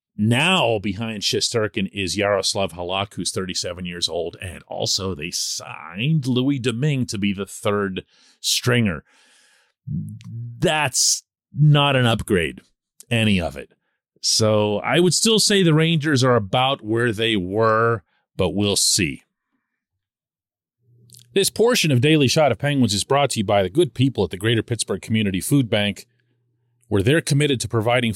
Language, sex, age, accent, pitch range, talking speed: English, male, 40-59, American, 100-140 Hz, 150 wpm